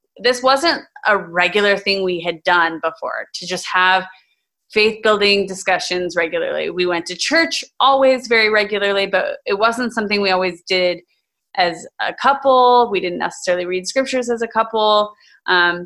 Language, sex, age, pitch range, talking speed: English, female, 20-39, 185-240 Hz, 160 wpm